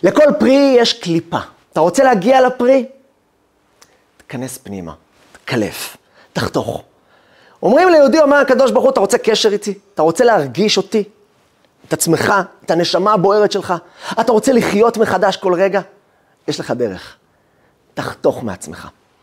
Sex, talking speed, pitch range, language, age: male, 135 wpm, 170-225 Hz, Hebrew, 30-49